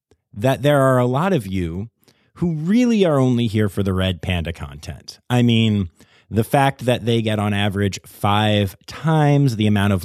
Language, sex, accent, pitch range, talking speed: English, male, American, 105-145 Hz, 185 wpm